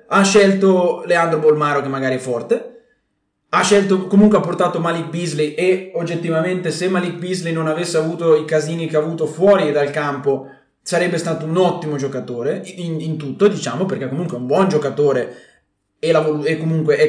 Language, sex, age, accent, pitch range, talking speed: Italian, male, 20-39, native, 140-185 Hz, 180 wpm